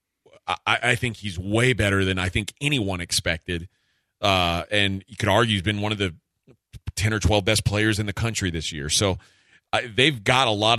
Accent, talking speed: American, 200 wpm